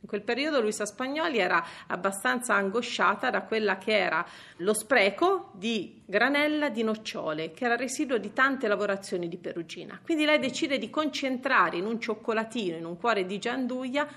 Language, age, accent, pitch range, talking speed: Italian, 40-59, native, 195-265 Hz, 170 wpm